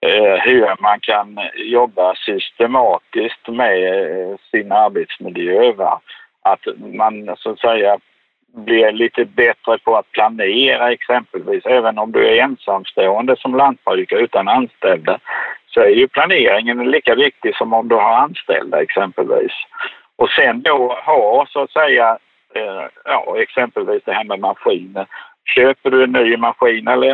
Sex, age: male, 60-79